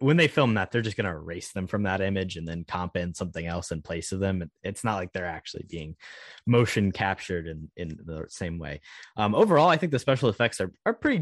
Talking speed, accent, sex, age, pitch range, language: 245 wpm, American, male, 20-39, 90-120 Hz, English